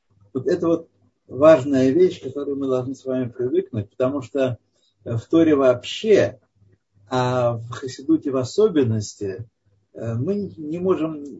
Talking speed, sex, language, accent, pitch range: 125 wpm, male, Russian, native, 120-165 Hz